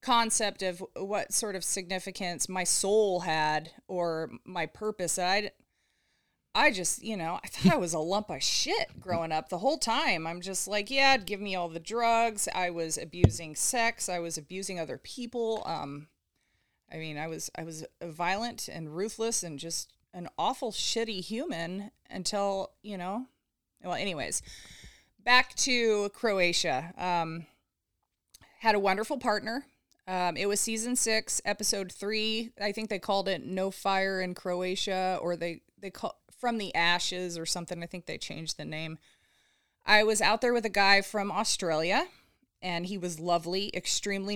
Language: English